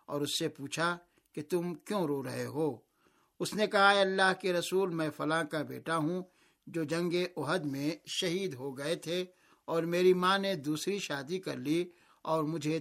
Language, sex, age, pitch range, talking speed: Urdu, male, 60-79, 155-185 Hz, 185 wpm